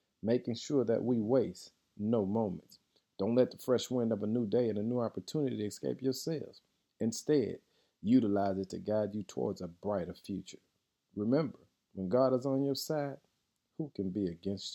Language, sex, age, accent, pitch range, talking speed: English, male, 40-59, American, 105-135 Hz, 180 wpm